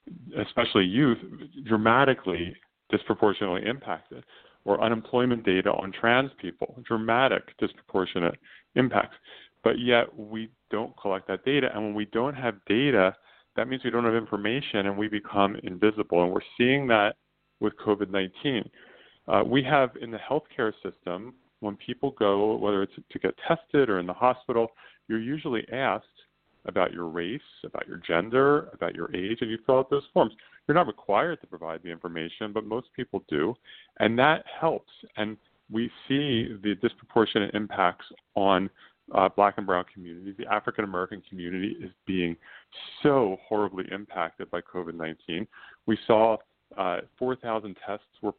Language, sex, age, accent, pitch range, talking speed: English, male, 40-59, American, 95-120 Hz, 150 wpm